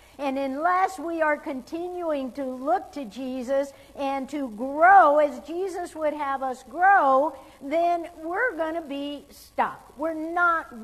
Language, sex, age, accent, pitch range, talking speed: English, female, 60-79, American, 230-300 Hz, 145 wpm